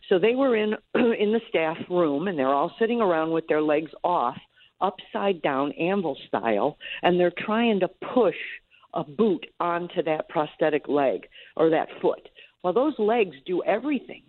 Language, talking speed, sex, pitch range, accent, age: English, 165 wpm, female, 155-200 Hz, American, 50-69